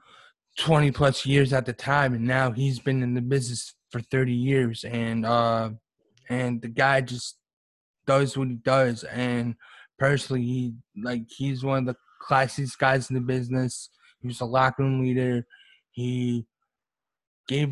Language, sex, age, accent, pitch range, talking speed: English, male, 20-39, American, 125-140 Hz, 155 wpm